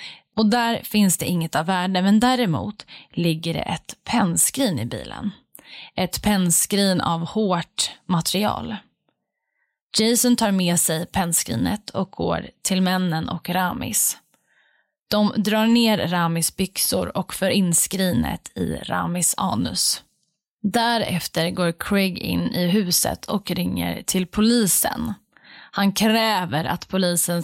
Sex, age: female, 20-39